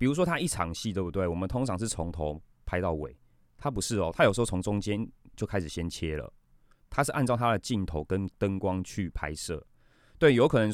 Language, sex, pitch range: Chinese, male, 80-110 Hz